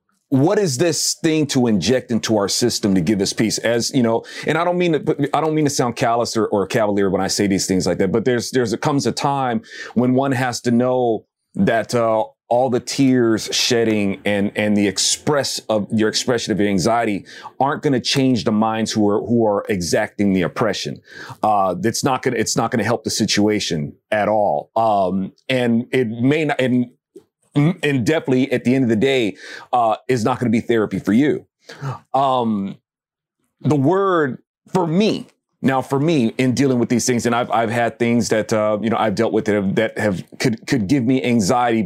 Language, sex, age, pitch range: English, male, 40-59, 110-140 Hz